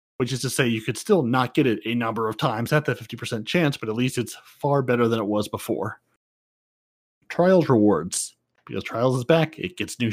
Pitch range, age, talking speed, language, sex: 115-145 Hz, 30-49, 220 wpm, English, male